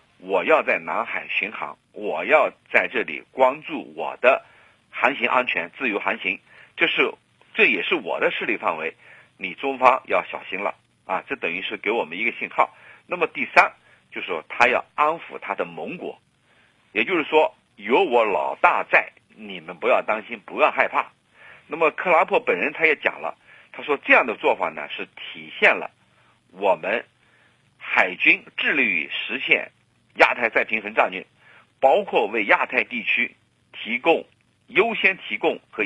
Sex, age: male, 50-69